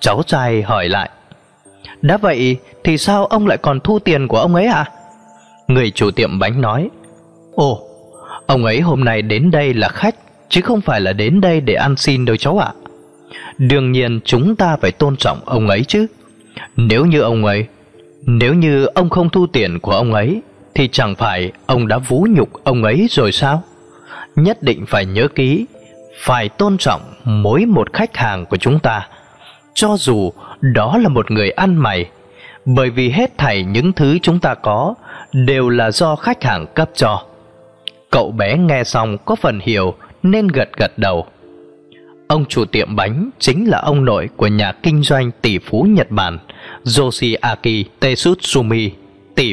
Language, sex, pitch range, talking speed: Vietnamese, male, 105-165 Hz, 180 wpm